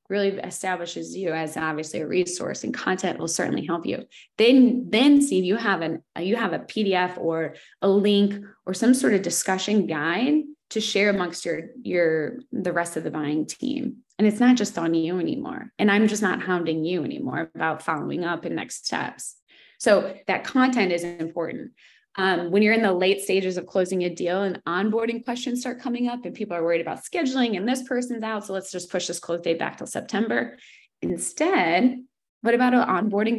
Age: 20-39